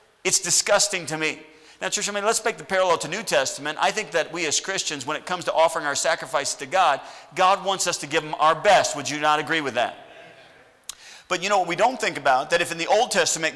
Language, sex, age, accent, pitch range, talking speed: English, male, 40-59, American, 145-180 Hz, 245 wpm